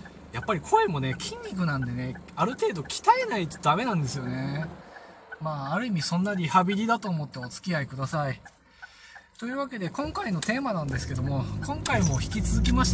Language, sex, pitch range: Japanese, male, 115-155 Hz